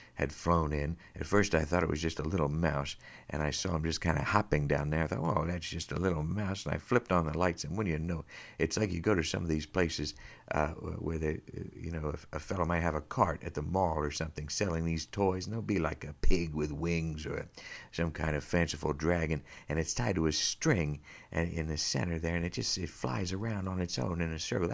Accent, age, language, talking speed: American, 60-79, English, 255 wpm